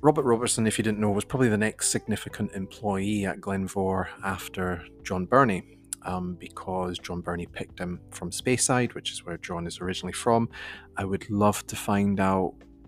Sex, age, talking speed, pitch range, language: male, 30-49, 175 wpm, 90-105 Hz, English